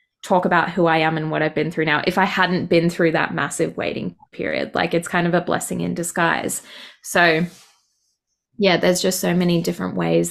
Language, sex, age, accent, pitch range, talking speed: English, female, 20-39, Australian, 165-180 Hz, 210 wpm